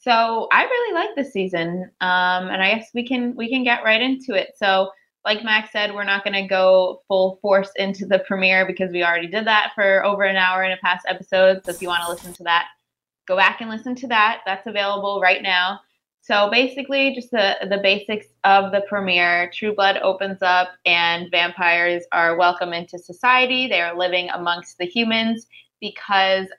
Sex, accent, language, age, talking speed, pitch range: female, American, English, 20-39, 200 wpm, 180-215 Hz